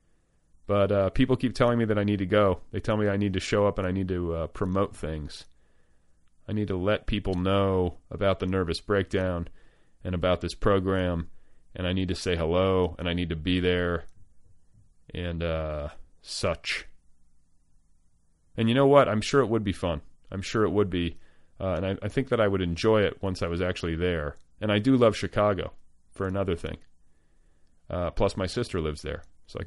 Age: 30-49